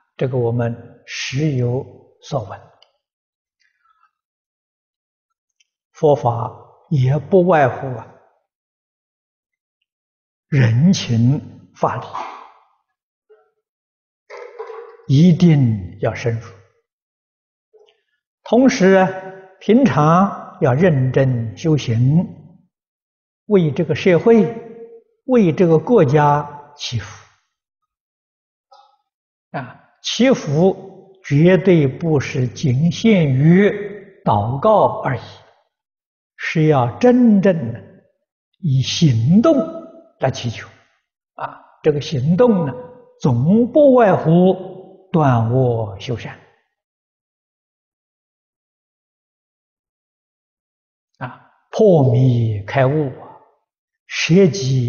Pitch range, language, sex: 125-205 Hz, Chinese, male